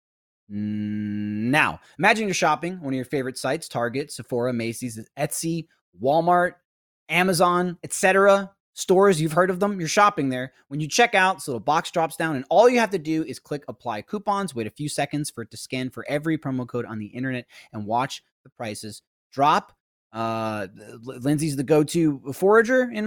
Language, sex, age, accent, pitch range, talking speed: English, male, 20-39, American, 130-190 Hz, 180 wpm